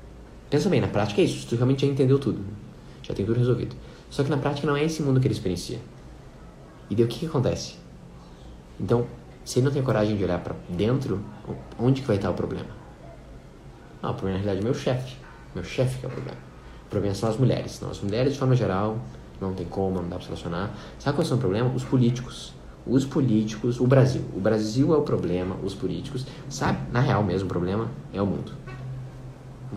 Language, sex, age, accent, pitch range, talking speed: Portuguese, male, 20-39, Brazilian, 95-130 Hz, 225 wpm